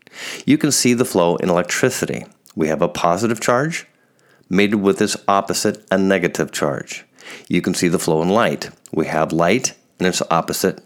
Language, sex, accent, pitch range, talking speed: English, male, American, 85-110 Hz, 175 wpm